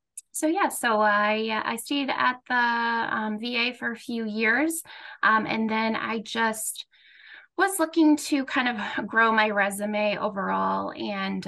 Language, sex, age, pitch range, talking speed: English, female, 20-39, 205-255 Hz, 150 wpm